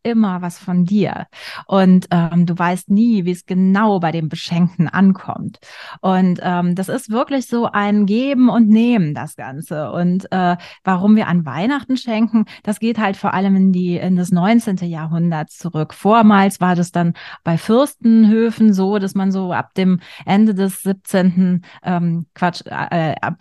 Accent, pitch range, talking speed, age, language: German, 175-210 Hz, 170 wpm, 30-49, German